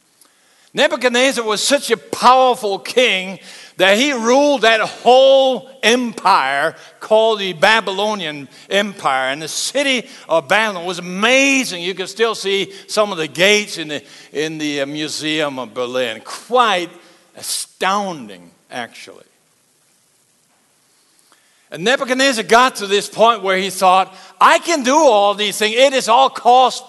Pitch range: 155-235 Hz